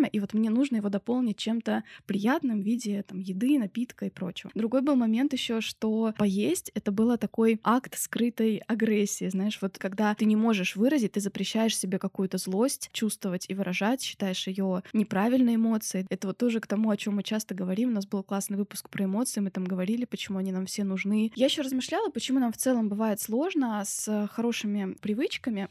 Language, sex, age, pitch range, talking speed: Russian, female, 20-39, 205-250 Hz, 195 wpm